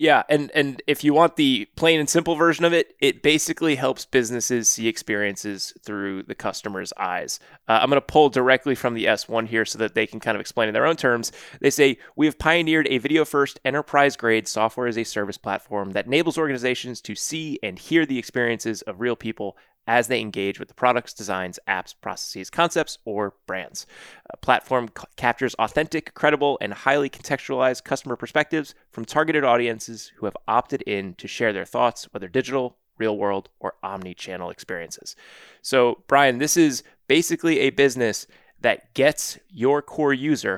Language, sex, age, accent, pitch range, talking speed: English, male, 20-39, American, 110-150 Hz, 175 wpm